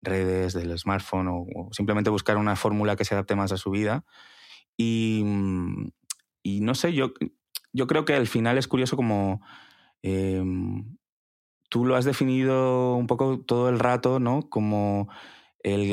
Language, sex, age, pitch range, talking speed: Spanish, male, 20-39, 100-120 Hz, 160 wpm